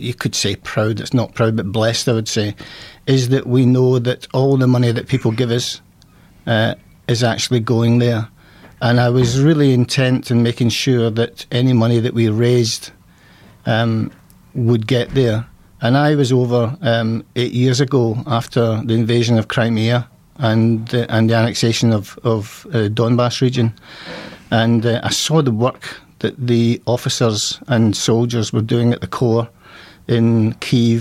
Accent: British